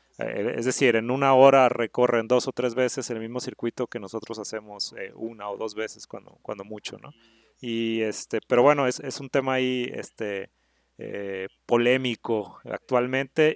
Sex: male